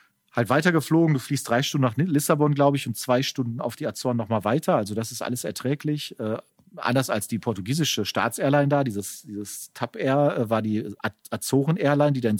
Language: German